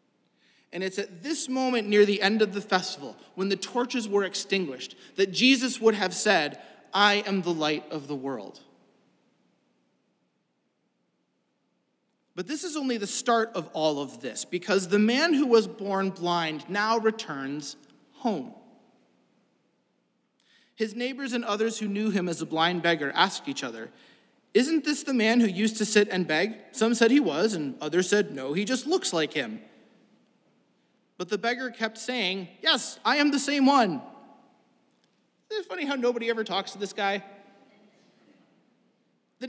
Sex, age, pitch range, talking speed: male, 30-49, 195-265 Hz, 160 wpm